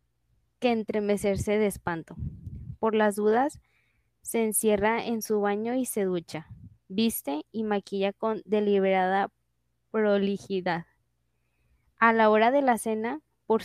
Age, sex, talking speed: 10-29, female, 120 wpm